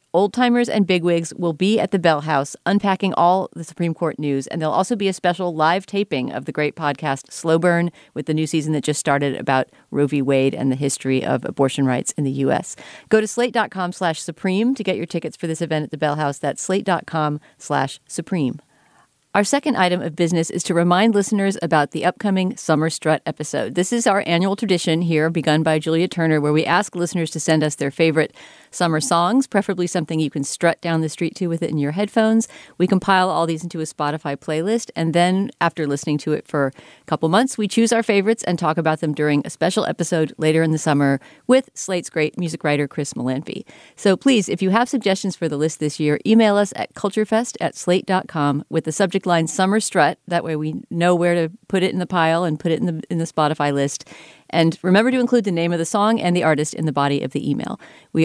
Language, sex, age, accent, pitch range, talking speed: English, female, 40-59, American, 155-190 Hz, 230 wpm